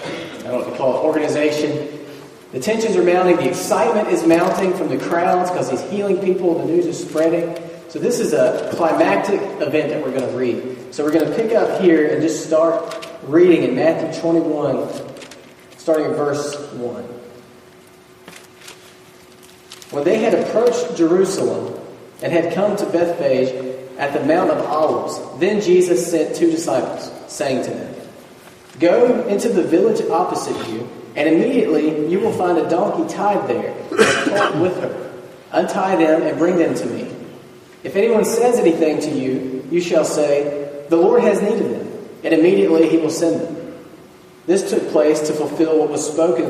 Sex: male